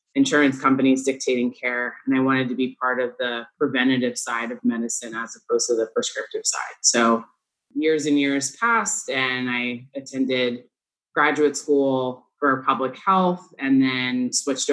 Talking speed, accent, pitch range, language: 155 wpm, American, 130-145 Hz, English